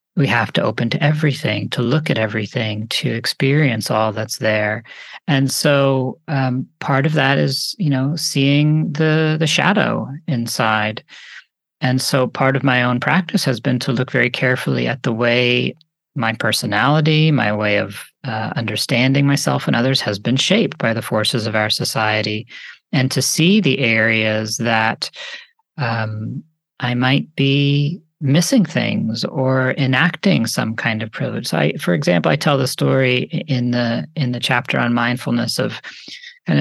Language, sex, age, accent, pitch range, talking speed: English, male, 40-59, American, 115-145 Hz, 160 wpm